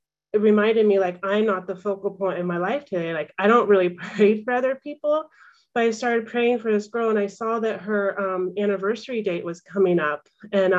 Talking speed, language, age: 220 wpm, English, 30-49